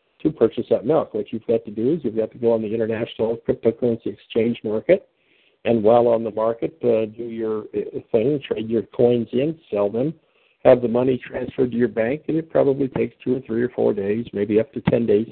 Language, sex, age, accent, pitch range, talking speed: English, male, 60-79, American, 115-140 Hz, 225 wpm